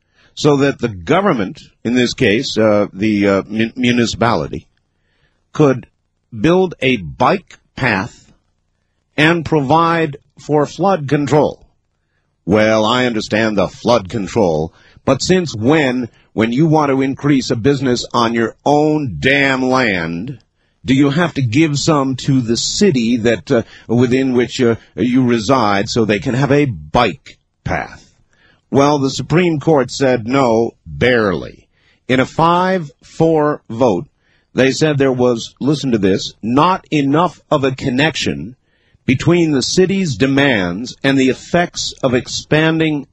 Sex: male